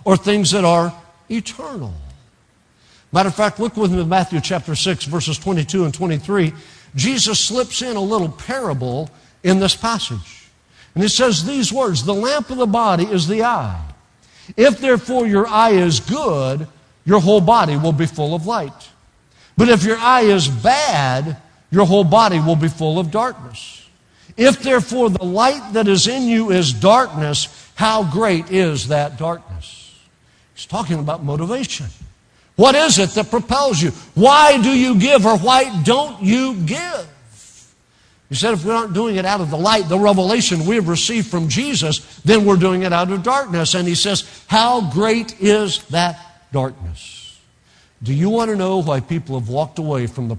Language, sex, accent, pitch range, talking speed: English, male, American, 150-220 Hz, 175 wpm